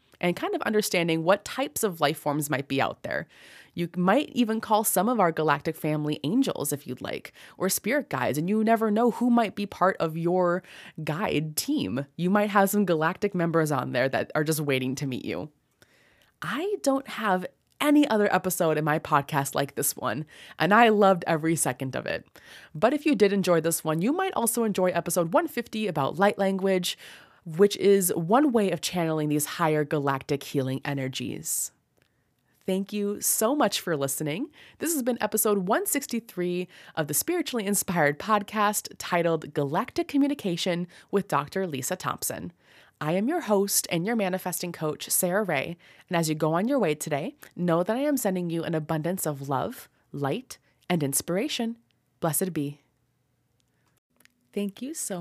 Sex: female